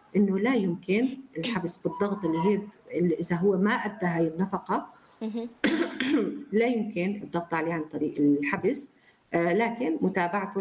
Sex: female